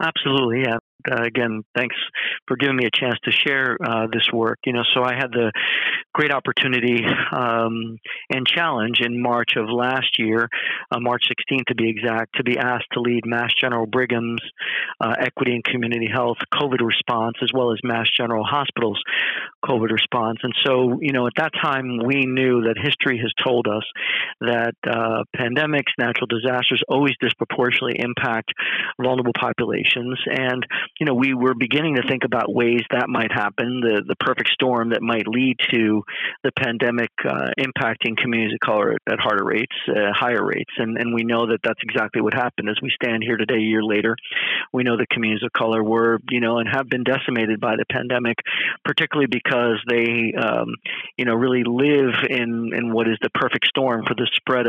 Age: 50-69